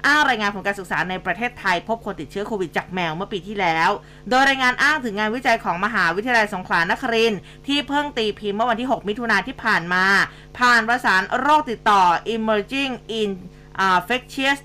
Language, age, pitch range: Thai, 20-39, 195-235 Hz